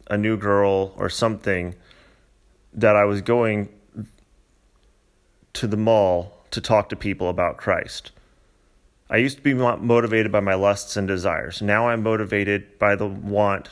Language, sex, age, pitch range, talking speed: English, male, 30-49, 90-105 Hz, 150 wpm